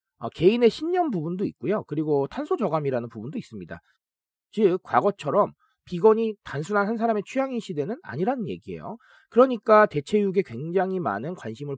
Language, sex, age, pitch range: Korean, male, 40-59, 145-220 Hz